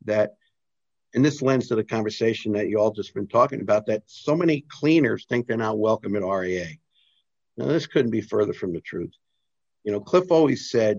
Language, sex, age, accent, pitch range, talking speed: English, male, 50-69, American, 95-115 Hz, 200 wpm